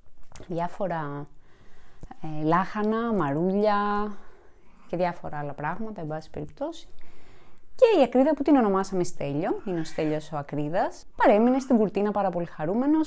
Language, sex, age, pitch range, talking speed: Greek, female, 20-39, 160-215 Hz, 135 wpm